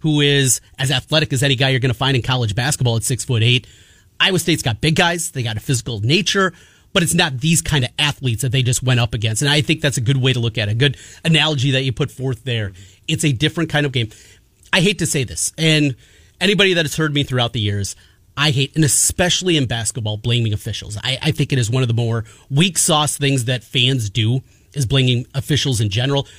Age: 30-49